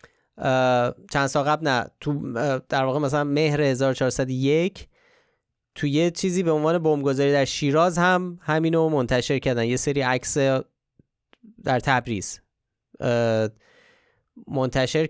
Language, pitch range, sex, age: Persian, 110-150 Hz, male, 30-49